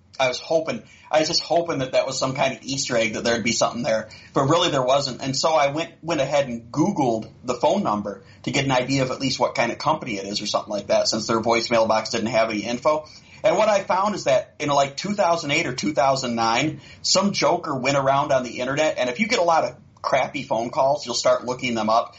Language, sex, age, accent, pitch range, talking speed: English, male, 40-59, American, 115-145 Hz, 250 wpm